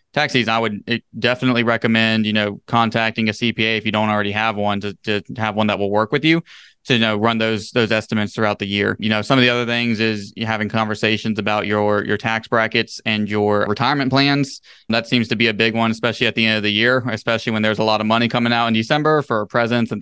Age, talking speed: 20-39, 245 wpm